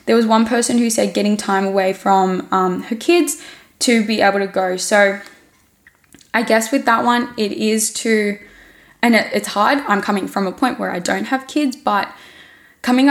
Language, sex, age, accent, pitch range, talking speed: English, female, 10-29, Australian, 195-240 Hz, 190 wpm